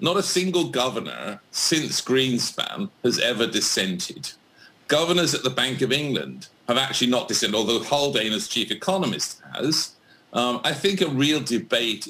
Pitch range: 110-155 Hz